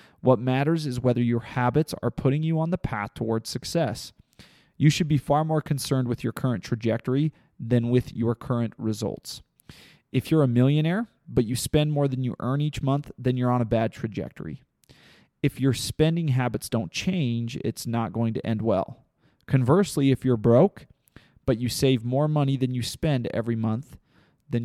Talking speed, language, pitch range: 185 wpm, English, 115-145 Hz